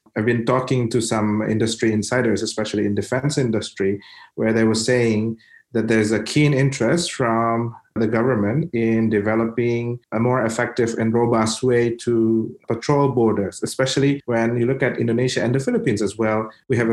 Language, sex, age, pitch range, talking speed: English, male, 30-49, 110-130 Hz, 165 wpm